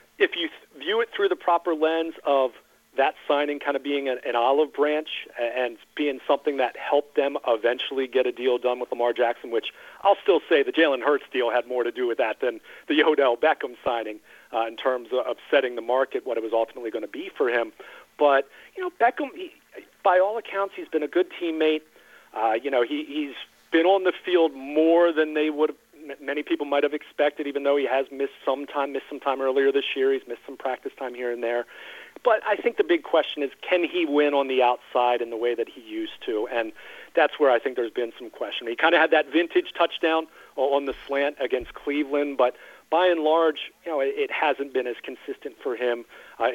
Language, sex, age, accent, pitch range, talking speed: English, male, 40-59, American, 125-180 Hz, 225 wpm